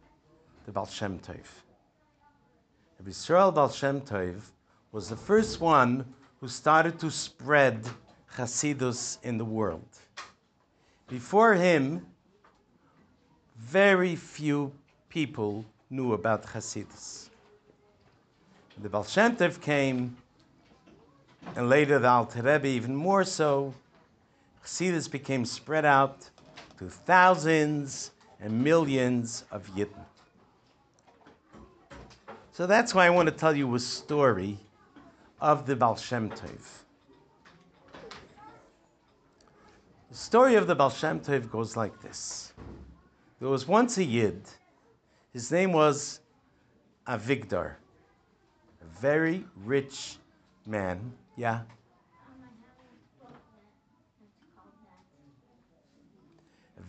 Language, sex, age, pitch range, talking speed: English, male, 60-79, 110-155 Hz, 95 wpm